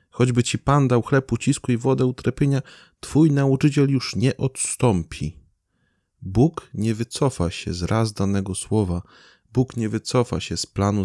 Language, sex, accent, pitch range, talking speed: Polish, male, native, 85-110 Hz, 150 wpm